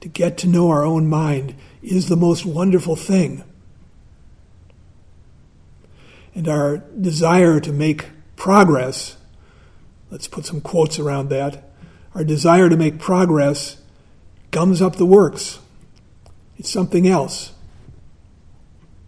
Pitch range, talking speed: 135-170 Hz, 115 wpm